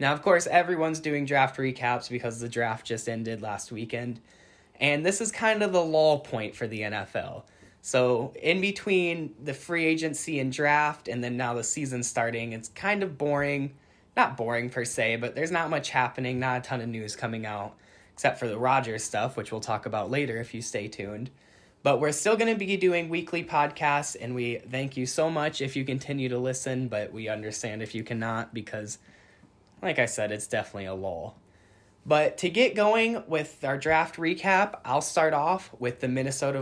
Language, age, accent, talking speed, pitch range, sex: English, 10-29, American, 200 wpm, 115-150 Hz, male